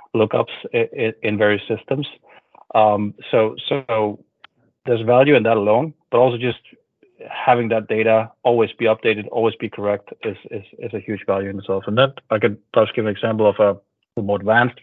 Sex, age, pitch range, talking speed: male, 30-49, 100-120 Hz, 180 wpm